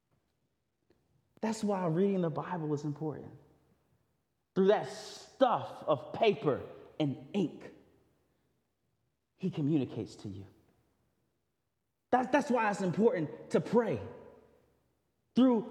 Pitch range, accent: 150-245 Hz, American